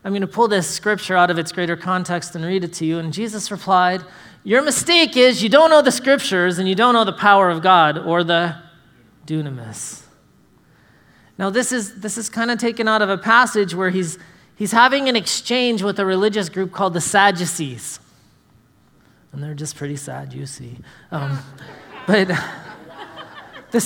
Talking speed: 180 wpm